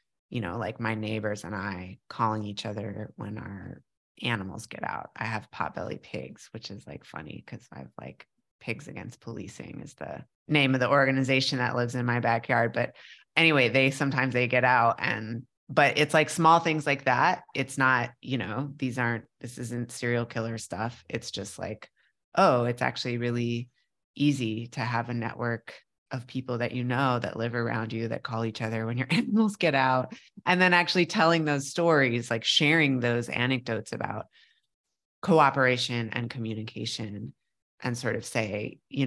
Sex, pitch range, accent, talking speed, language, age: female, 115-140 Hz, American, 175 wpm, English, 30-49